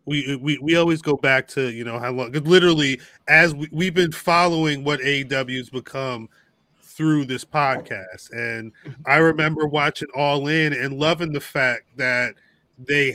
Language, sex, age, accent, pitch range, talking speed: English, male, 20-39, American, 135-165 Hz, 160 wpm